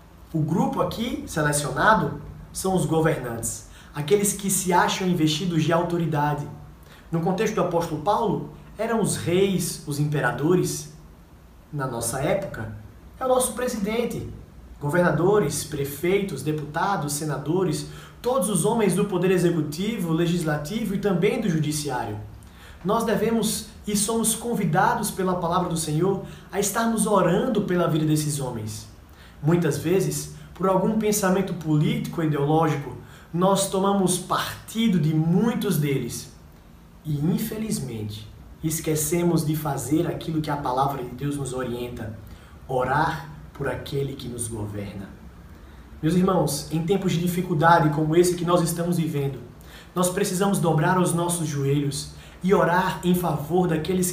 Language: Portuguese